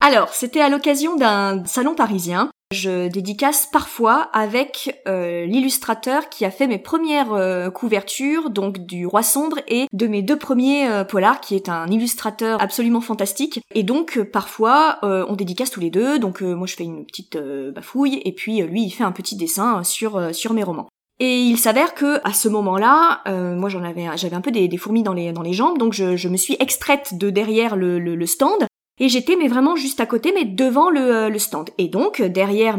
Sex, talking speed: female, 220 wpm